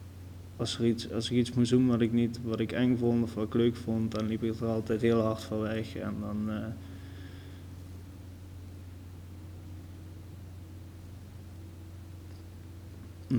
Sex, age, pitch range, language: male, 20-39, 90-120 Hz, Dutch